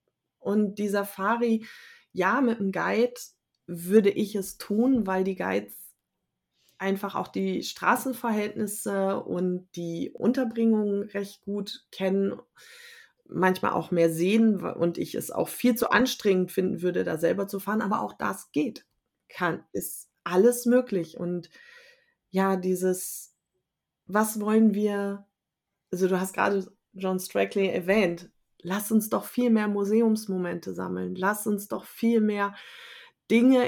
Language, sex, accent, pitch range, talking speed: German, female, German, 185-220 Hz, 135 wpm